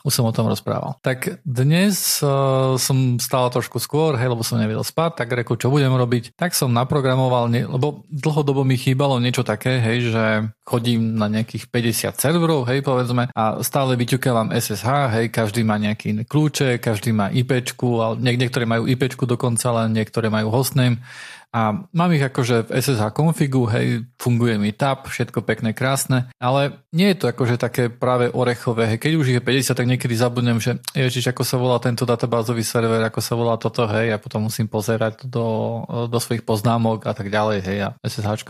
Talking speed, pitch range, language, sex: 190 wpm, 115-135 Hz, Slovak, male